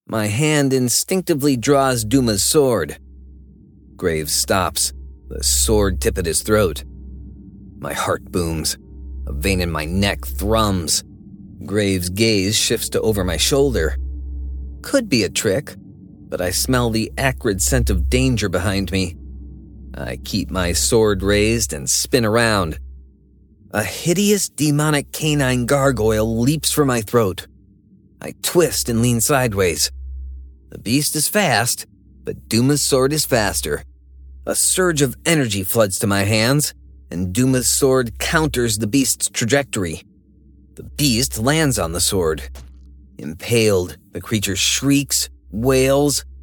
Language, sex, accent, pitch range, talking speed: English, male, American, 70-120 Hz, 130 wpm